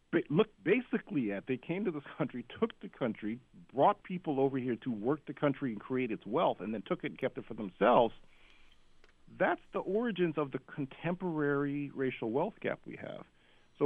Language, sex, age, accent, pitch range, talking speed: English, male, 40-59, American, 100-150 Hz, 195 wpm